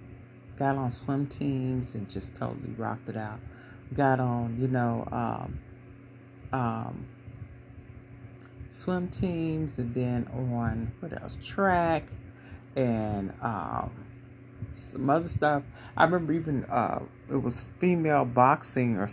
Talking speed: 120 wpm